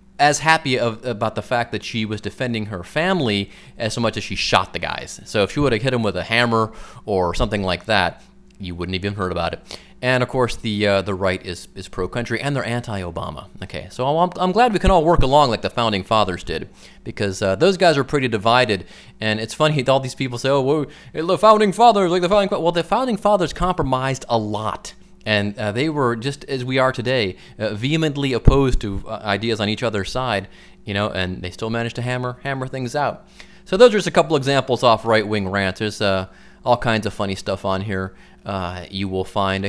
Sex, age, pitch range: male, 30-49, 100-130 Hz